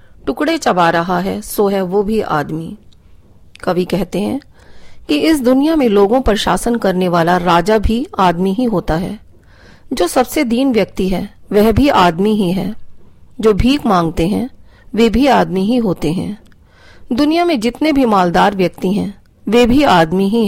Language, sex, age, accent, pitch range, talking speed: Hindi, female, 40-59, native, 180-245 Hz, 170 wpm